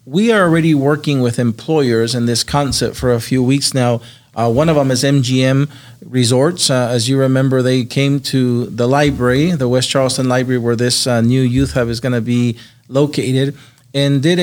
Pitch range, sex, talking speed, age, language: 125-145 Hz, male, 195 wpm, 40-59, English